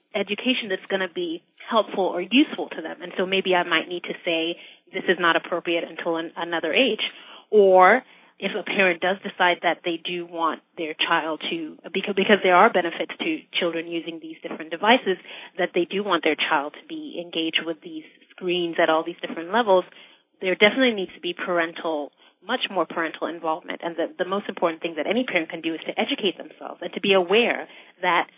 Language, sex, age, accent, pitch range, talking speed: English, female, 30-49, American, 170-205 Hz, 205 wpm